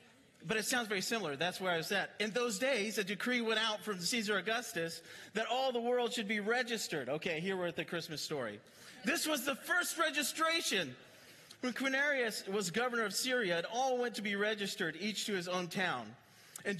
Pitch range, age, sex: 150-210 Hz, 40-59, male